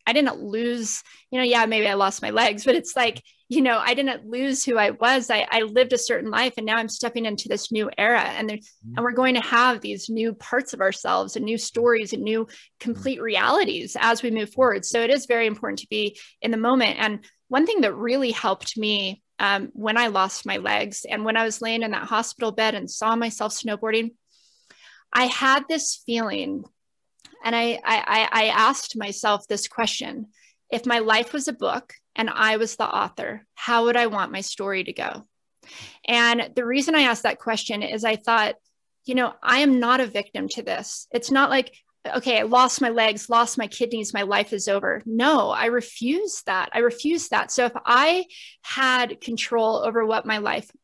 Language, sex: English, female